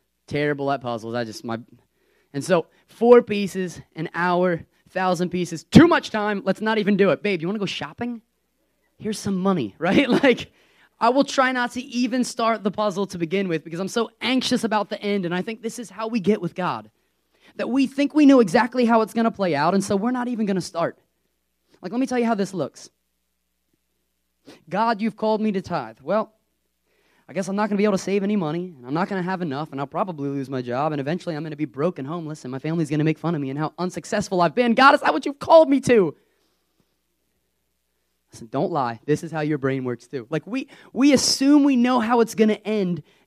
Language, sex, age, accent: English, male, 20-39, American